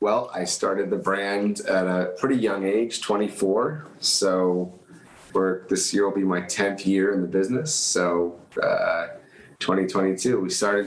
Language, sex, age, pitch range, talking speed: English, male, 30-49, 90-95 Hz, 150 wpm